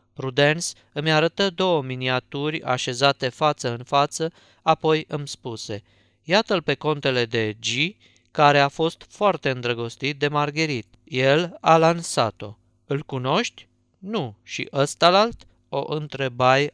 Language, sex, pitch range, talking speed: Romanian, male, 120-160 Hz, 125 wpm